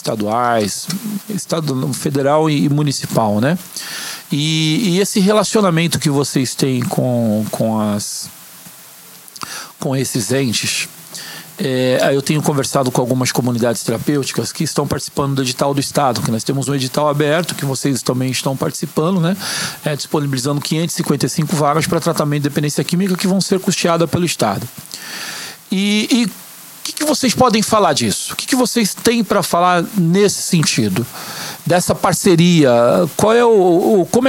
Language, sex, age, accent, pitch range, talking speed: Portuguese, male, 40-59, Brazilian, 140-195 Hz, 130 wpm